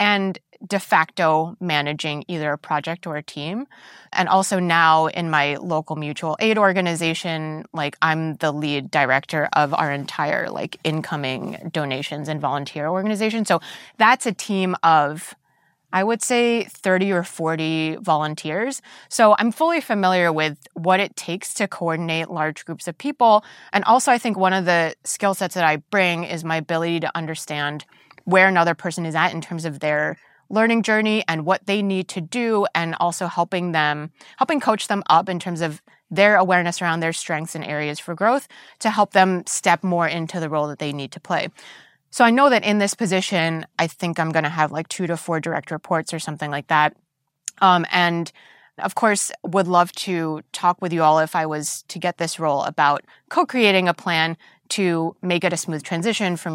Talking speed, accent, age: 190 wpm, American, 20-39